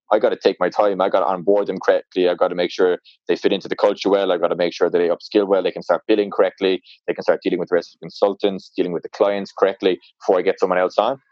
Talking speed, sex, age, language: 305 wpm, male, 20-39, English